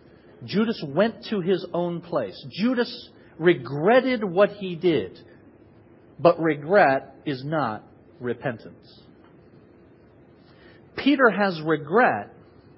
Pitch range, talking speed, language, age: 130-190 Hz, 90 wpm, English, 50-69